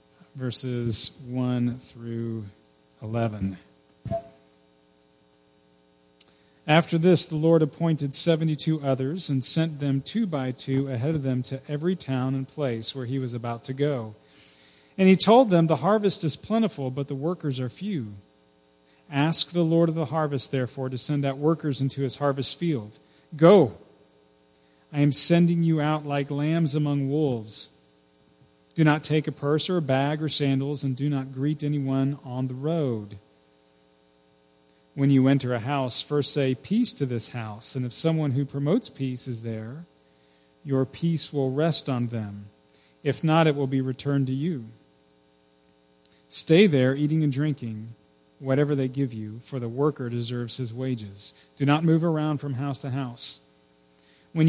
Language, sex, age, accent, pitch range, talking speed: English, male, 40-59, American, 100-150 Hz, 160 wpm